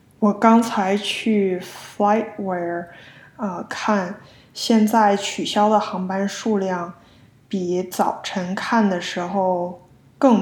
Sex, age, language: female, 20-39, Chinese